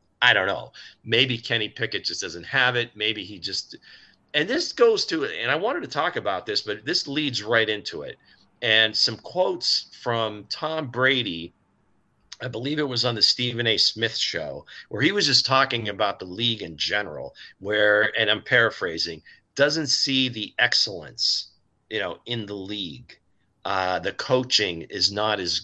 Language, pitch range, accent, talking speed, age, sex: English, 100-125 Hz, American, 175 wpm, 40-59, male